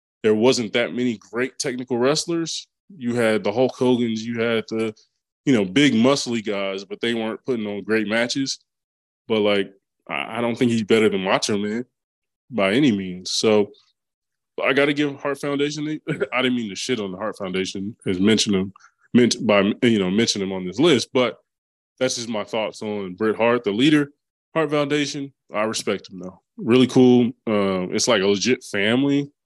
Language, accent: English, American